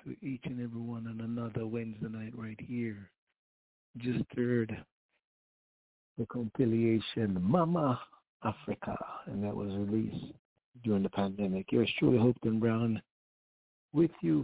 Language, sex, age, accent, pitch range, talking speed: English, male, 60-79, American, 105-130 Hz, 125 wpm